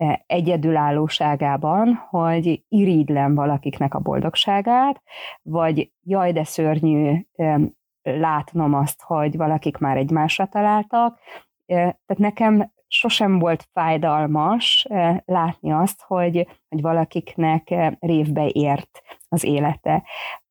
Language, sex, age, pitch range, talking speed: Hungarian, female, 30-49, 155-195 Hz, 90 wpm